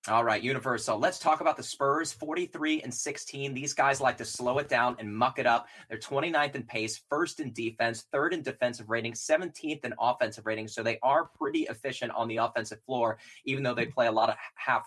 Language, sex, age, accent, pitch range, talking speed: English, male, 20-39, American, 110-145 Hz, 220 wpm